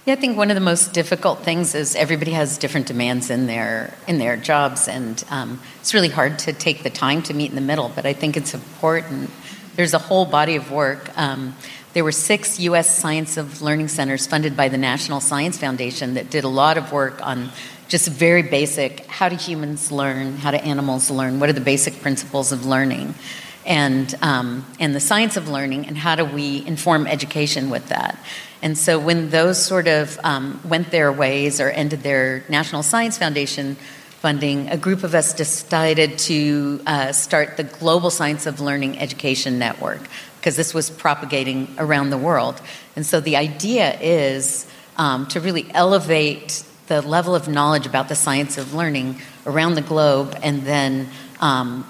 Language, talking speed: English, 185 wpm